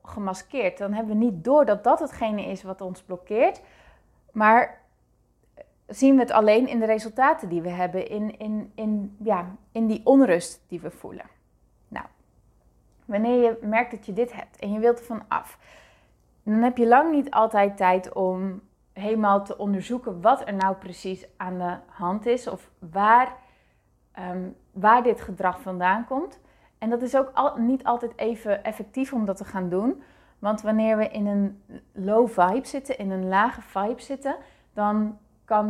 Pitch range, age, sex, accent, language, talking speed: 195-235 Hz, 20-39, female, Dutch, Dutch, 175 wpm